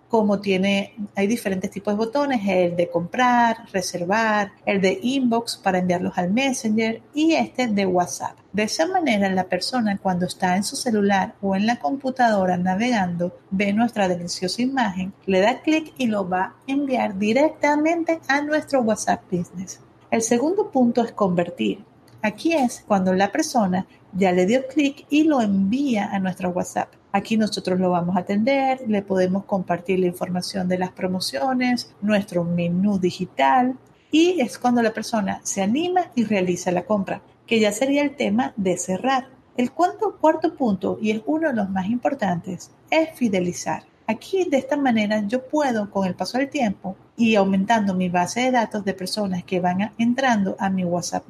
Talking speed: 170 wpm